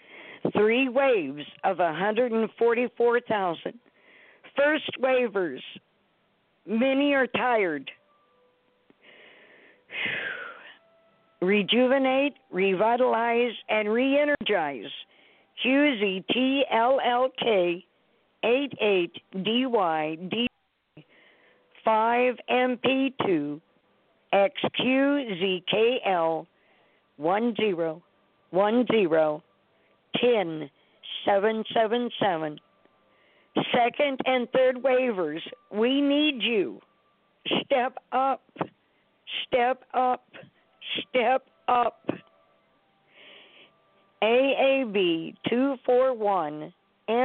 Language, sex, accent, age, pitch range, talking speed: English, female, American, 50-69, 195-255 Hz, 55 wpm